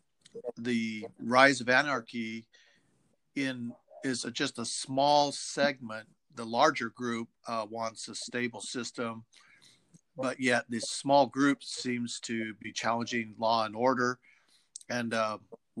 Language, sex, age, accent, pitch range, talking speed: English, male, 50-69, American, 110-125 Hz, 125 wpm